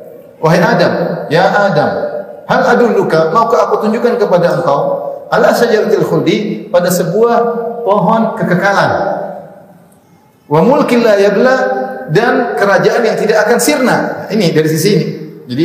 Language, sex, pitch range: Indonesian, male, 160-220 Hz